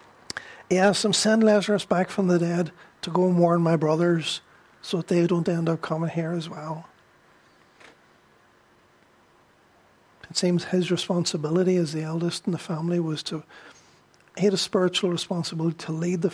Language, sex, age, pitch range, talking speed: English, male, 50-69, 165-190 Hz, 165 wpm